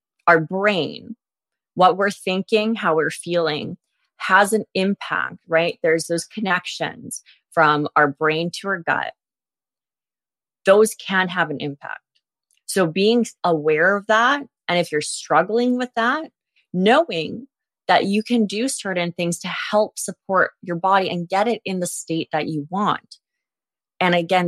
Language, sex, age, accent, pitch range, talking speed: English, female, 20-39, American, 165-205 Hz, 145 wpm